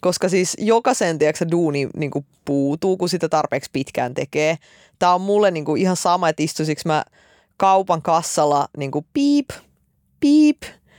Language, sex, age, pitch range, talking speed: Finnish, female, 20-39, 145-195 Hz, 135 wpm